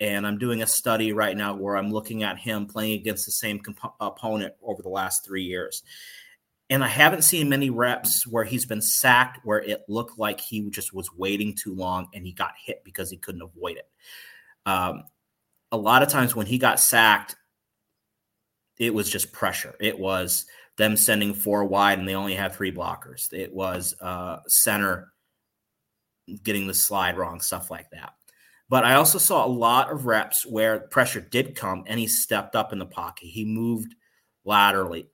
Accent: American